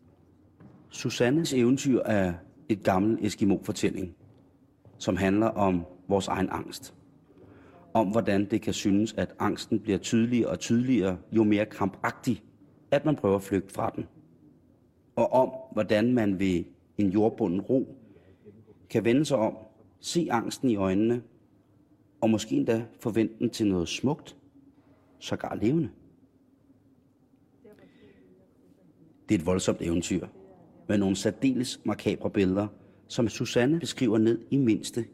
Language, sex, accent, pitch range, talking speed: Danish, male, native, 95-115 Hz, 130 wpm